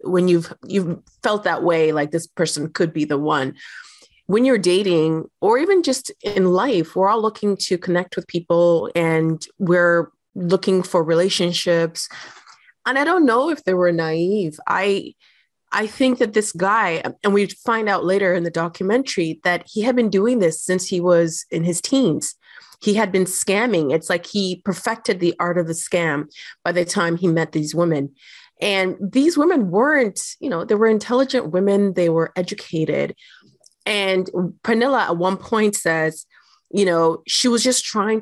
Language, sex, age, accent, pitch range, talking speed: English, female, 30-49, American, 170-210 Hz, 175 wpm